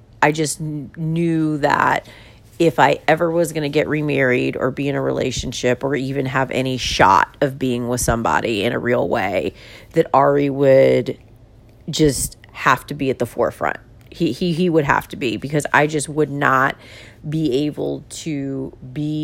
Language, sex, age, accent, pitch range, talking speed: English, female, 40-59, American, 115-155 Hz, 175 wpm